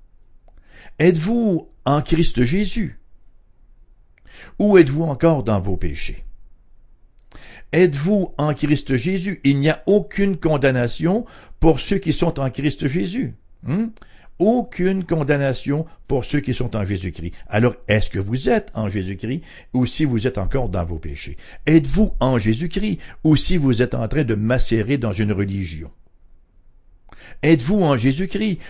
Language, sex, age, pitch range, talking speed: English, male, 60-79, 105-160 Hz, 140 wpm